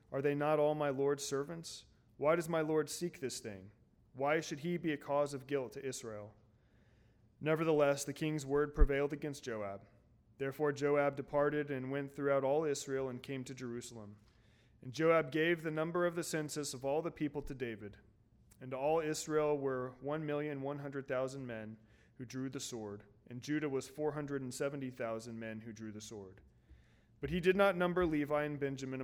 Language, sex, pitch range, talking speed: English, male, 115-150 Hz, 175 wpm